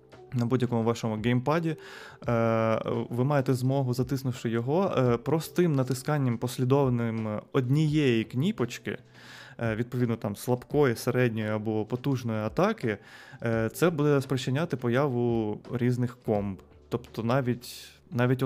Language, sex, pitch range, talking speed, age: Ukrainian, male, 115-135 Hz, 100 wpm, 20-39